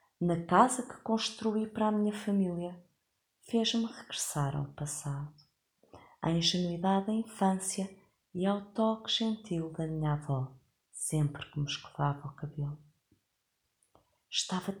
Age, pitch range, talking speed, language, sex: 30-49, 150-205 Hz, 120 wpm, Portuguese, female